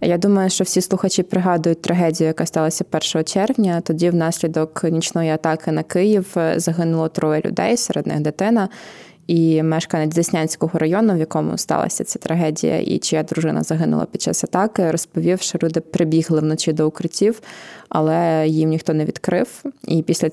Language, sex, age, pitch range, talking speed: Ukrainian, female, 20-39, 160-180 Hz, 155 wpm